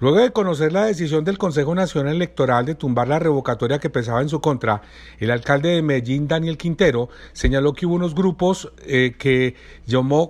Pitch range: 120-155 Hz